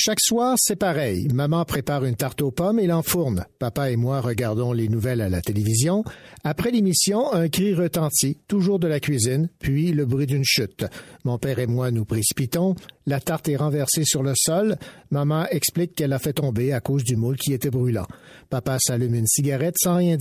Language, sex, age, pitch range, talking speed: French, male, 60-79, 135-175 Hz, 200 wpm